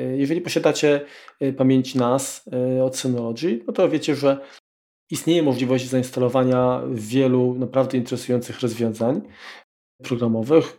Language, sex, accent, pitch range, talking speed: Polish, male, native, 125-140 Hz, 100 wpm